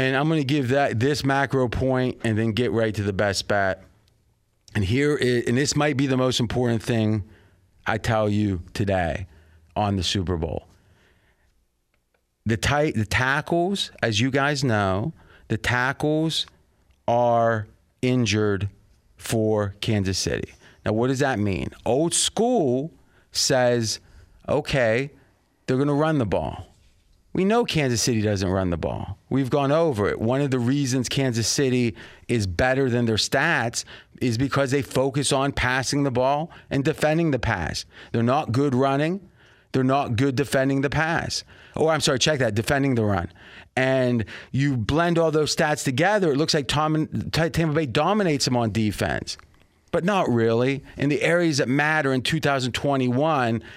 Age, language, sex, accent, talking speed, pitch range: 30-49, English, male, American, 160 wpm, 105-140 Hz